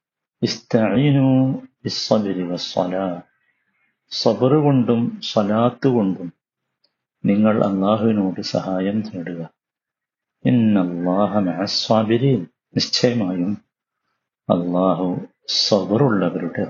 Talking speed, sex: 45 wpm, male